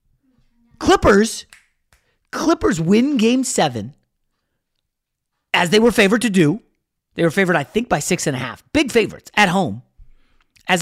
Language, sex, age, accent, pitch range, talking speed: English, male, 30-49, American, 120-190 Hz, 145 wpm